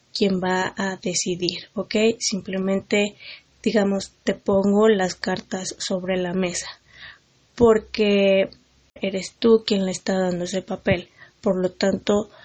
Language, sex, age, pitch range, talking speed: Spanish, female, 20-39, 190-220 Hz, 125 wpm